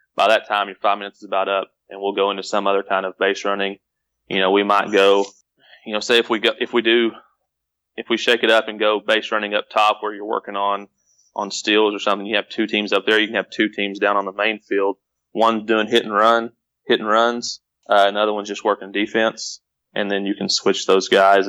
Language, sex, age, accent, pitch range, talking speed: English, male, 20-39, American, 100-110 Hz, 250 wpm